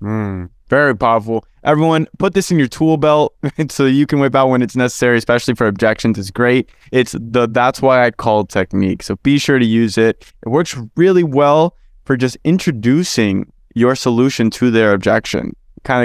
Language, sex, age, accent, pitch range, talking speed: English, male, 20-39, American, 115-155 Hz, 185 wpm